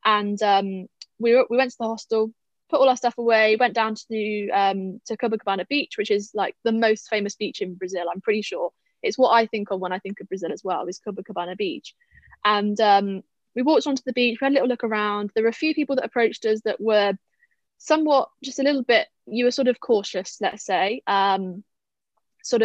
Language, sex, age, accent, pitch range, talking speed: English, female, 20-39, British, 200-250 Hz, 235 wpm